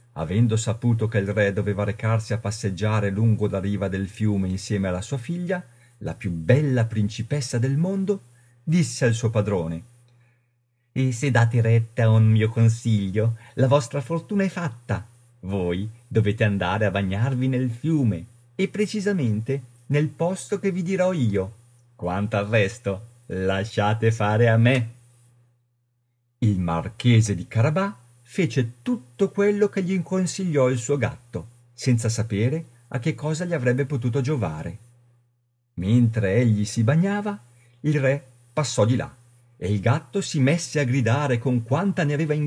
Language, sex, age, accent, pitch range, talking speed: Italian, male, 50-69, native, 110-150 Hz, 150 wpm